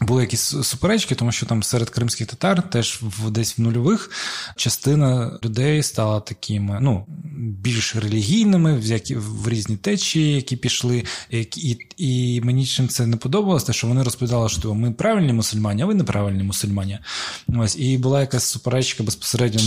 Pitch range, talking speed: 110-155 Hz, 155 wpm